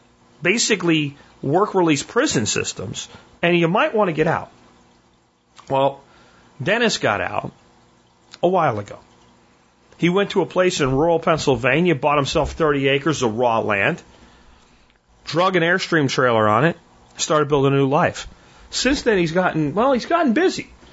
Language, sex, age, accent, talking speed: English, male, 40-59, American, 150 wpm